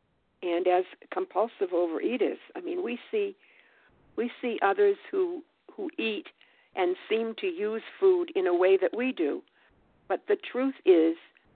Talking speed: 150 wpm